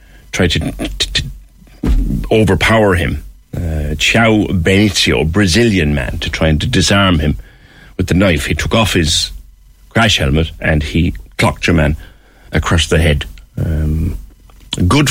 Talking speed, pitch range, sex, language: 140 wpm, 80-105 Hz, male, English